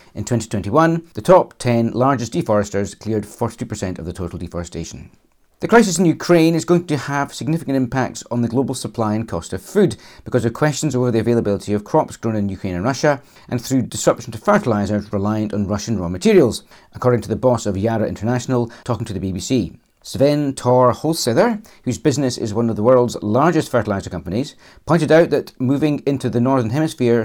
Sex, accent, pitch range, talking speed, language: male, British, 105-140 Hz, 190 wpm, English